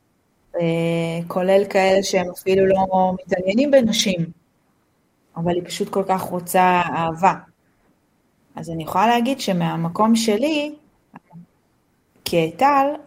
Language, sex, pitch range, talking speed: Hebrew, female, 175-210 Hz, 95 wpm